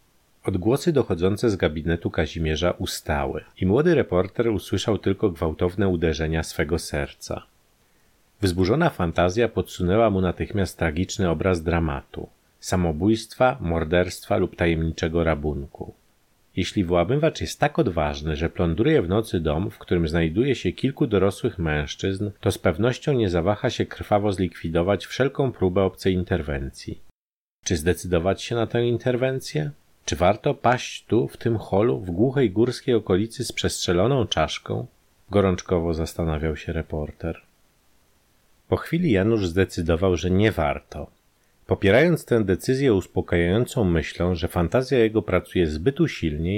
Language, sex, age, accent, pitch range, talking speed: Polish, male, 40-59, native, 85-115 Hz, 130 wpm